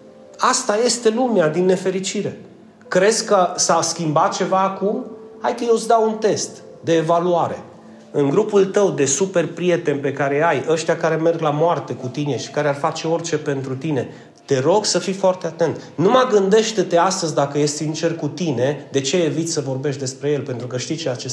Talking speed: 195 wpm